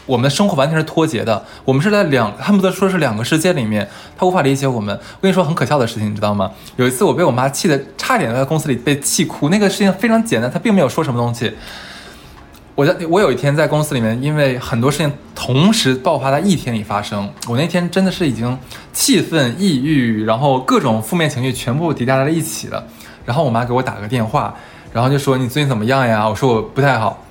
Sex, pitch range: male, 120-165 Hz